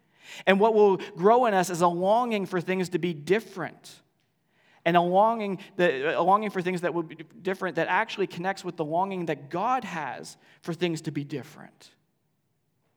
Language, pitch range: English, 155-180 Hz